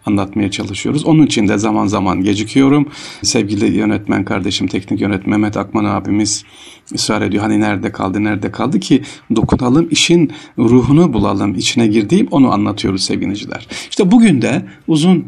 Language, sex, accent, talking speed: Turkish, male, native, 150 wpm